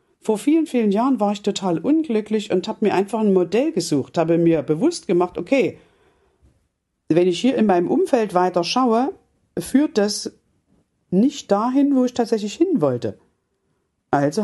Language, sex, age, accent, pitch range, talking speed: German, female, 50-69, German, 180-255 Hz, 160 wpm